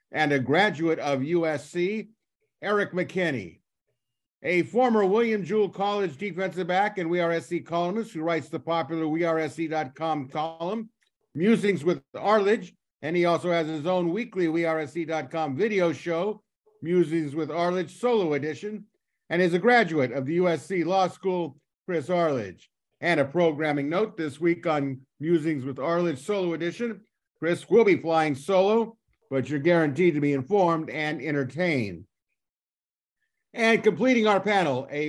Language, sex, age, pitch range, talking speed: English, male, 50-69, 155-190 Hz, 145 wpm